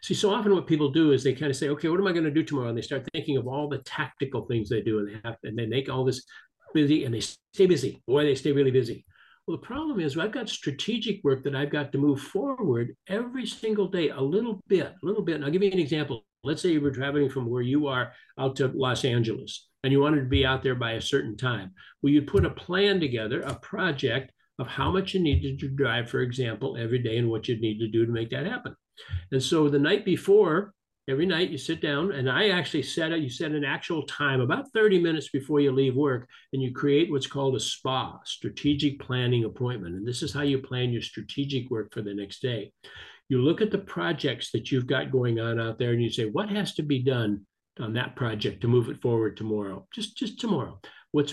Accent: American